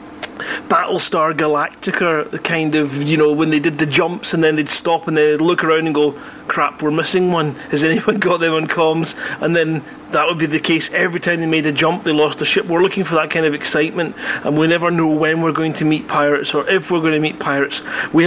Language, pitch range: English, 155-185 Hz